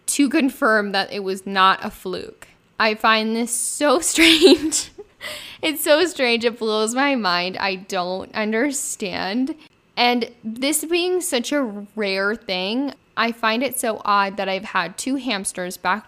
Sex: female